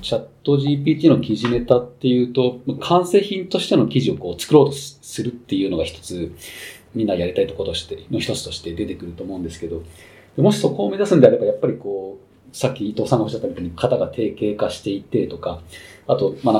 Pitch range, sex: 100-155 Hz, male